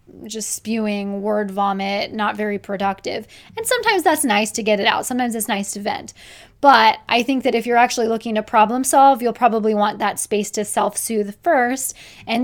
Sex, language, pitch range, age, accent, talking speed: female, English, 215-245 Hz, 20-39, American, 195 wpm